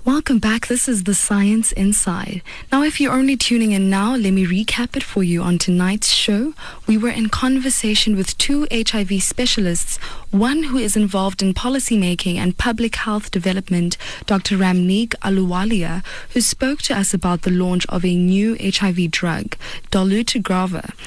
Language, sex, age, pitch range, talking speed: English, female, 20-39, 185-230 Hz, 160 wpm